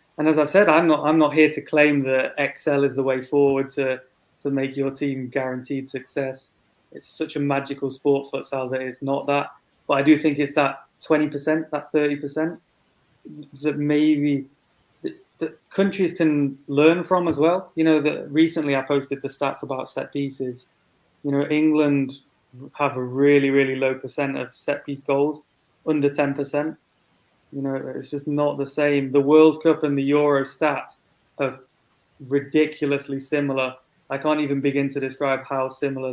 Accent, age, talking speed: British, 20-39, 170 wpm